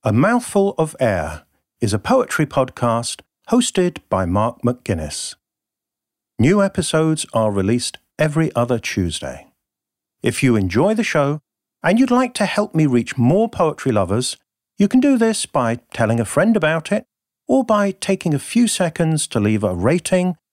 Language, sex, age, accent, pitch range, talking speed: English, male, 50-69, British, 115-185 Hz, 160 wpm